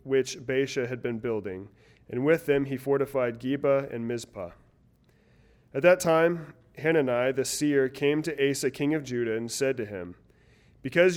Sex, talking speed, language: male, 160 wpm, English